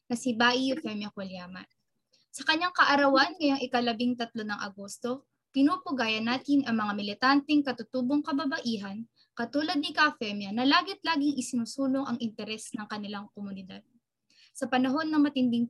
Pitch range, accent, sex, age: 225-275 Hz, Filipino, female, 20-39